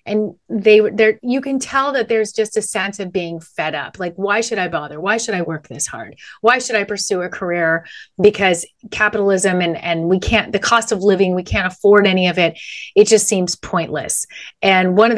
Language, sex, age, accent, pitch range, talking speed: English, female, 30-49, American, 165-210 Hz, 220 wpm